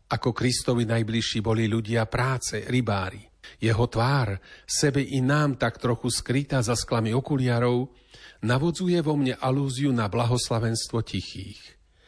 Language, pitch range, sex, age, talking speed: Slovak, 110-135 Hz, male, 40-59, 125 wpm